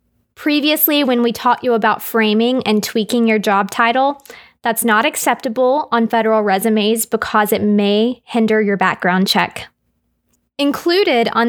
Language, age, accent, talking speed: English, 20-39, American, 140 wpm